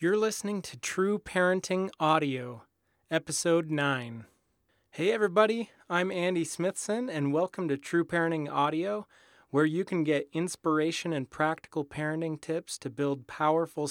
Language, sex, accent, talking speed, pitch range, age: English, male, American, 135 wpm, 140-170 Hz, 30-49